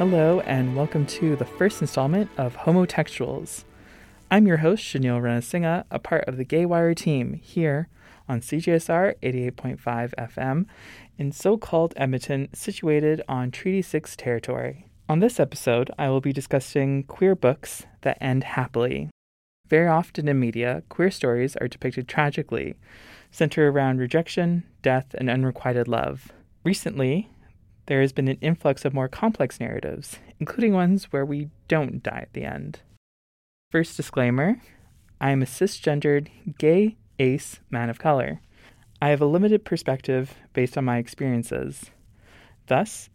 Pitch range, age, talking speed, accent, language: 125-160 Hz, 20-39, 140 wpm, American, English